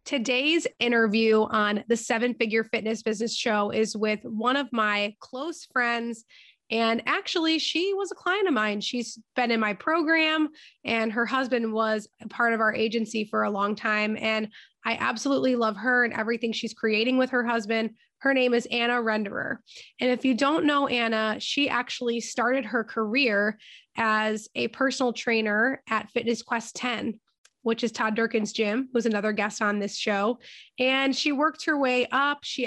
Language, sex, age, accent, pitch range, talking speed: English, female, 20-39, American, 220-255 Hz, 175 wpm